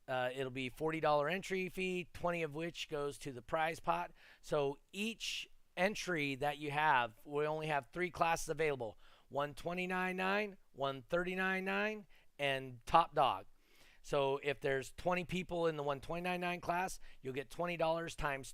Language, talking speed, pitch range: English, 150 wpm, 130-170 Hz